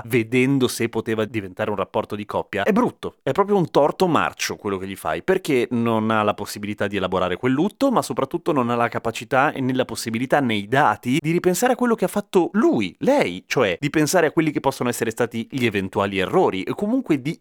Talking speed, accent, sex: 220 wpm, native, male